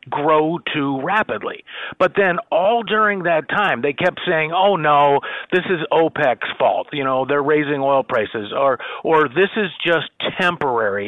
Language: English